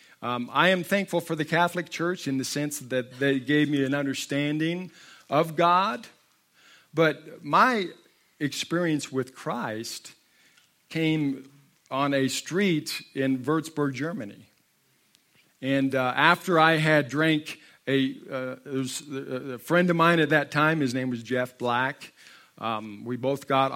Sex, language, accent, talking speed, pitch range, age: male, English, American, 145 wpm, 130-155 Hz, 50-69